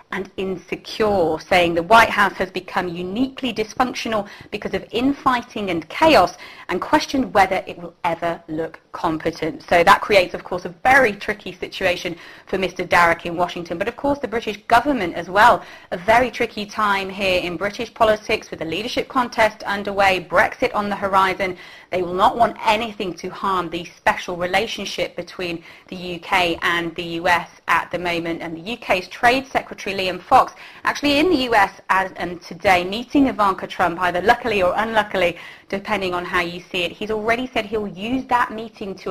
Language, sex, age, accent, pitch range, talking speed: English, female, 30-49, British, 175-225 Hz, 180 wpm